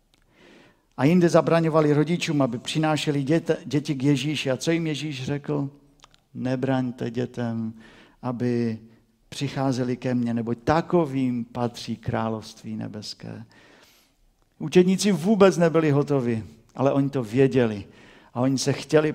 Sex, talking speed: male, 115 wpm